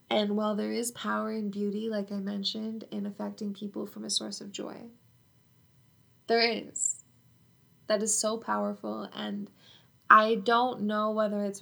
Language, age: English, 10-29